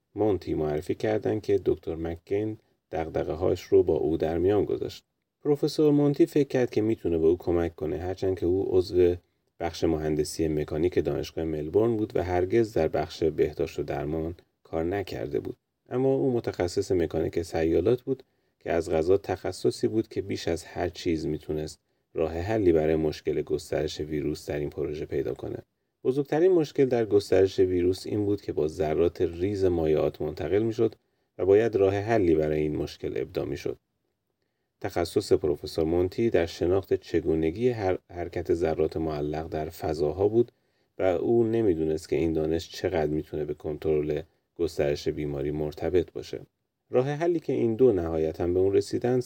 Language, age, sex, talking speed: Persian, 30-49, male, 160 wpm